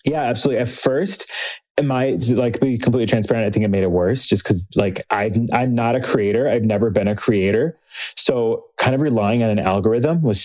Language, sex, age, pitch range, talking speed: English, male, 20-39, 100-120 Hz, 210 wpm